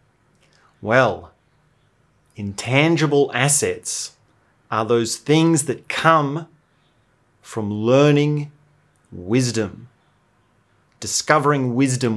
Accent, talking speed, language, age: Australian, 65 wpm, English, 30-49